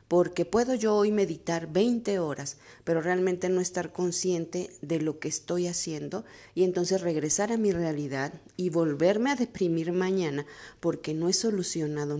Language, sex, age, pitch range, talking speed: Spanish, female, 40-59, 160-200 Hz, 155 wpm